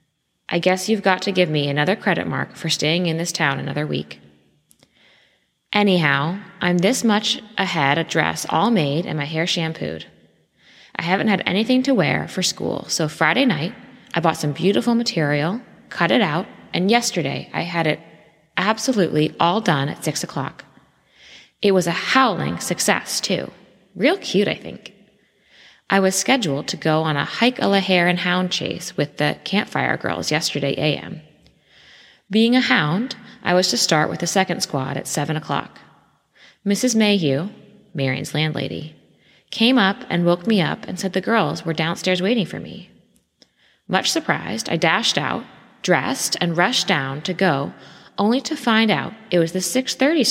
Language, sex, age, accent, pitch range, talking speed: English, female, 20-39, American, 155-210 Hz, 165 wpm